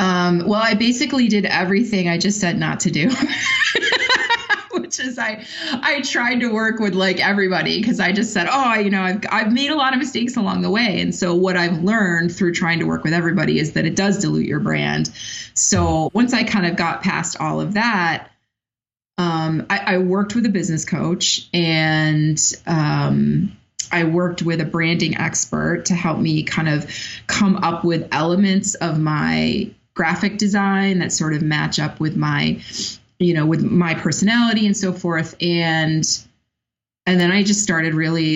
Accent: American